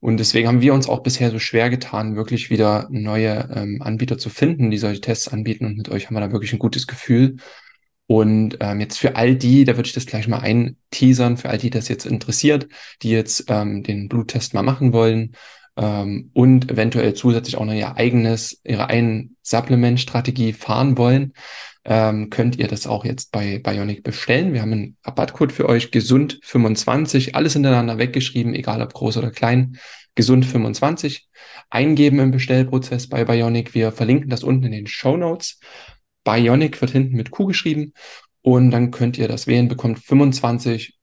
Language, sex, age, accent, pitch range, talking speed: German, male, 10-29, German, 110-130 Hz, 180 wpm